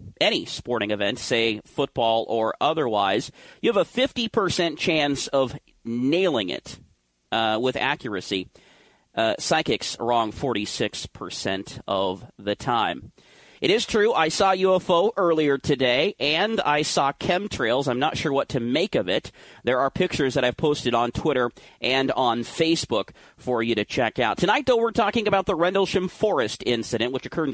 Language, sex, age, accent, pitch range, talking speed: English, male, 40-59, American, 125-165 Hz, 160 wpm